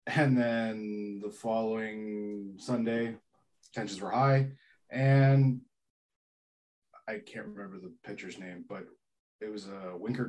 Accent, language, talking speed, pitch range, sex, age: American, English, 120 wpm, 90-115 Hz, male, 20-39